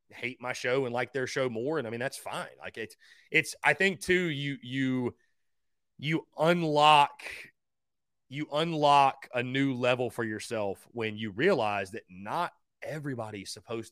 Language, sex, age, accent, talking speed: English, male, 30-49, American, 160 wpm